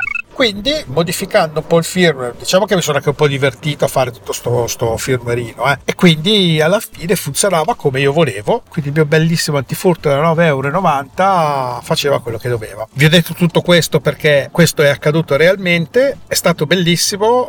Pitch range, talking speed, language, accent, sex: 140-180 Hz, 180 wpm, Italian, native, male